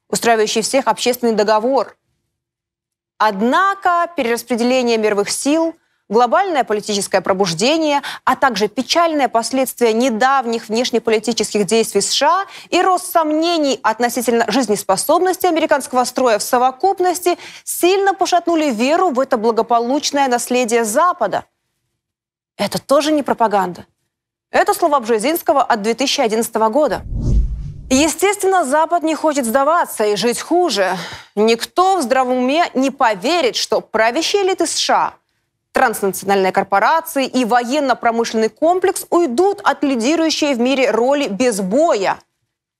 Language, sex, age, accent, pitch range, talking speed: Russian, female, 20-39, native, 225-325 Hz, 110 wpm